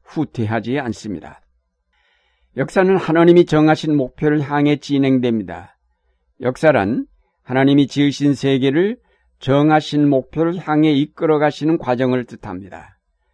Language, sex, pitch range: Korean, male, 120-145 Hz